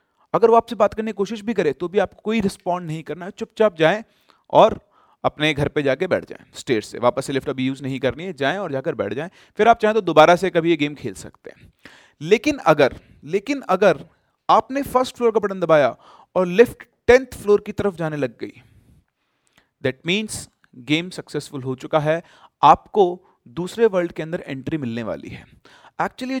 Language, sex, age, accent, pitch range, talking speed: Hindi, male, 30-49, native, 165-225 Hz, 205 wpm